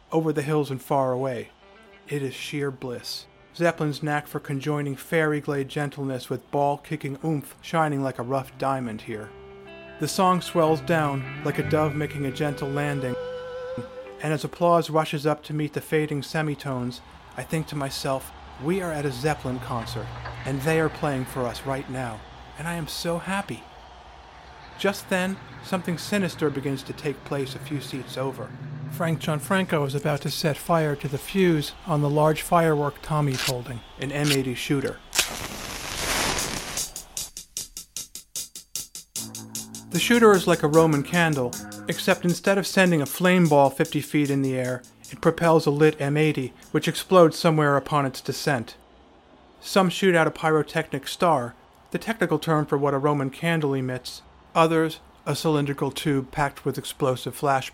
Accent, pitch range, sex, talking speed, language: American, 135-160 Hz, male, 160 wpm, English